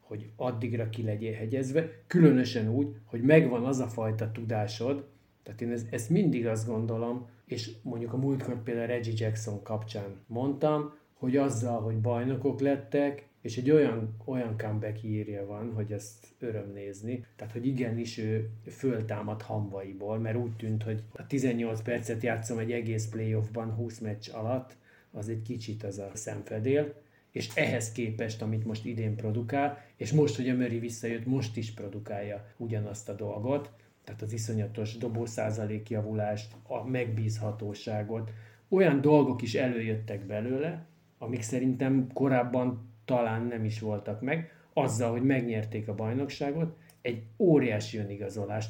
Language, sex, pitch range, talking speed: Hungarian, male, 110-130 Hz, 145 wpm